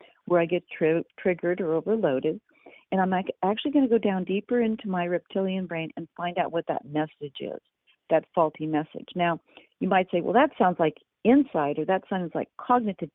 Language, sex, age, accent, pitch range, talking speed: English, female, 50-69, American, 165-220 Hz, 190 wpm